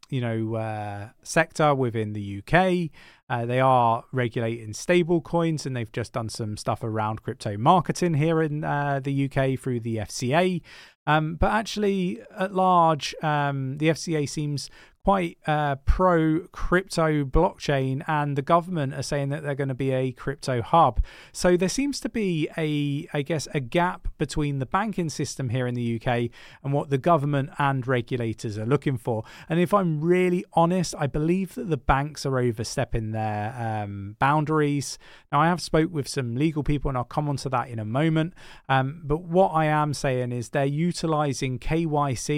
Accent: British